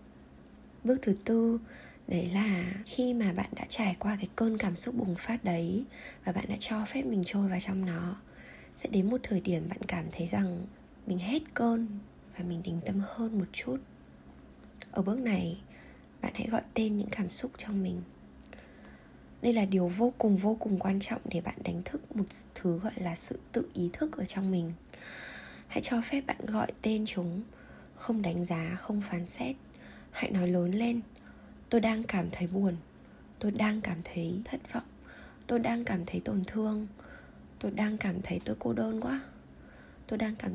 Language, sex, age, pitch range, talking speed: Vietnamese, female, 20-39, 175-225 Hz, 190 wpm